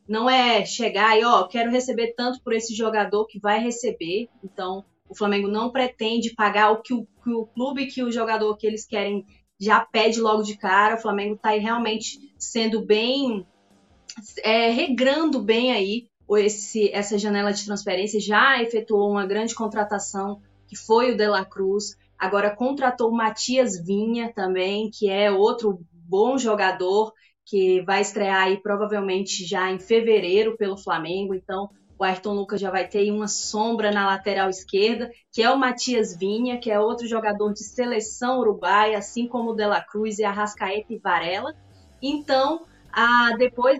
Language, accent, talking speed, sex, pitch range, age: Portuguese, Brazilian, 165 wpm, female, 200-235 Hz, 20-39